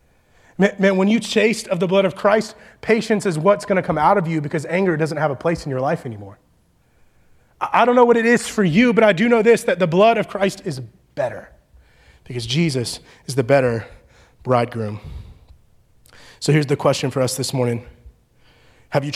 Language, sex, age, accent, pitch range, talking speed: English, male, 30-49, American, 125-175 Hz, 200 wpm